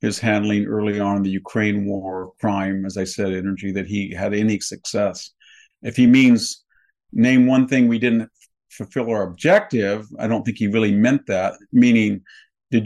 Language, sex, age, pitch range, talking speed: English, male, 50-69, 100-120 Hz, 175 wpm